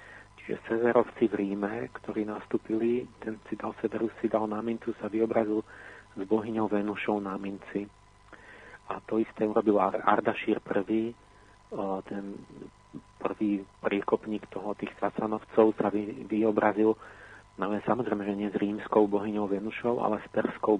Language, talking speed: Slovak, 125 wpm